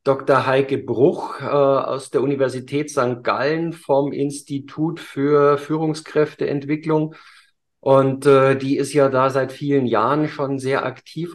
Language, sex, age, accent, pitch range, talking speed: German, male, 50-69, German, 125-150 Hz, 130 wpm